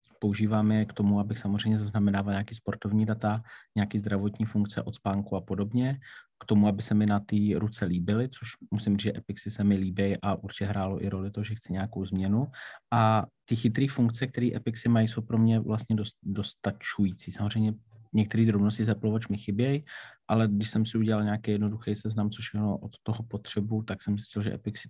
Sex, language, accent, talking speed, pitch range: male, Czech, native, 195 wpm, 100-110 Hz